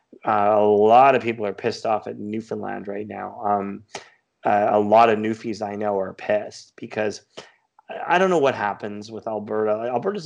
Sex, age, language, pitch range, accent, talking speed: male, 30-49, English, 105-115 Hz, American, 185 wpm